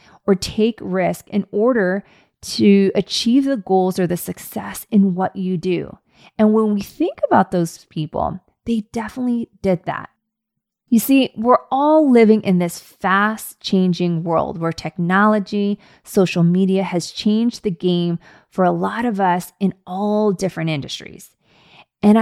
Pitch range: 180-220 Hz